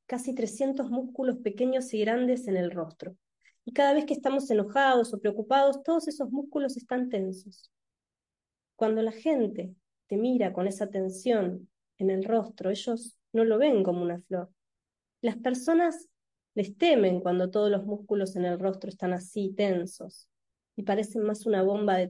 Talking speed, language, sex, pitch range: 165 wpm, Spanish, female, 190-240 Hz